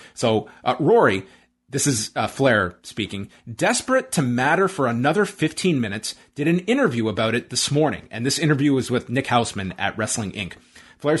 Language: English